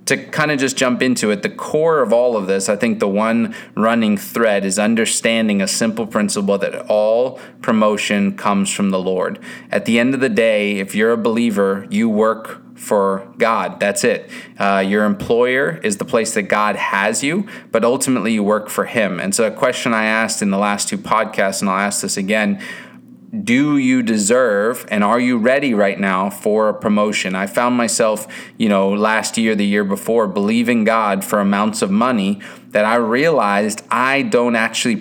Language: English